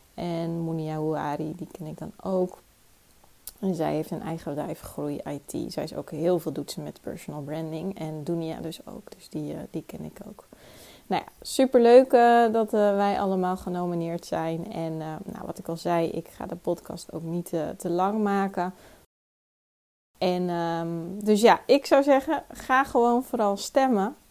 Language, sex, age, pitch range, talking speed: Dutch, female, 20-39, 160-200 Hz, 175 wpm